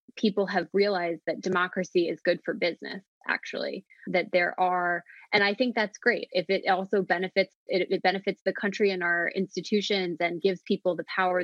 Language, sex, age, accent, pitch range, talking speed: English, female, 20-39, American, 175-200 Hz, 185 wpm